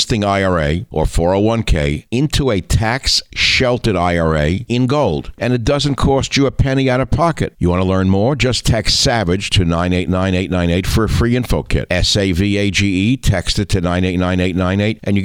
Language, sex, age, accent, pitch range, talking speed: English, male, 60-79, American, 90-115 Hz, 205 wpm